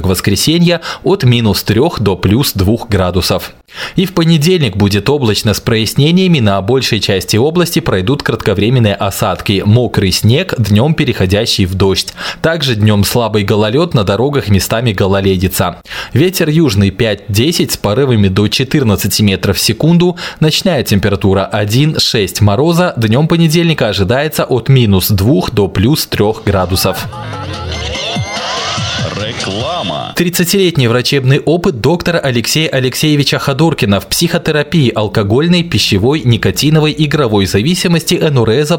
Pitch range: 100-150 Hz